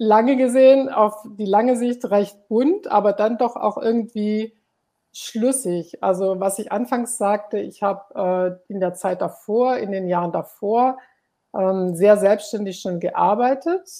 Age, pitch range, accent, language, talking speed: 50-69, 190-235 Hz, German, German, 145 wpm